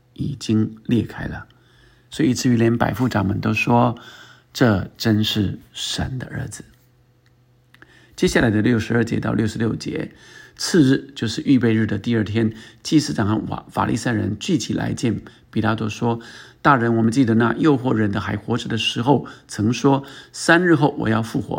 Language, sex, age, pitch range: Chinese, male, 50-69, 110-135 Hz